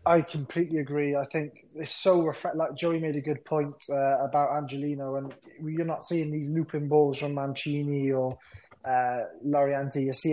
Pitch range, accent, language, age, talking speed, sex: 135-155 Hz, British, English, 20-39, 180 wpm, male